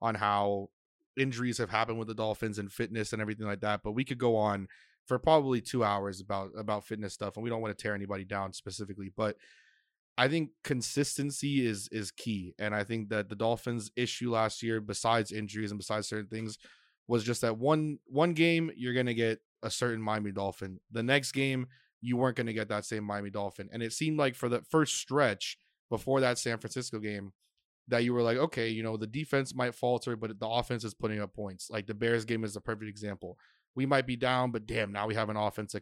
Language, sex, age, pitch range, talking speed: English, male, 20-39, 105-125 Hz, 225 wpm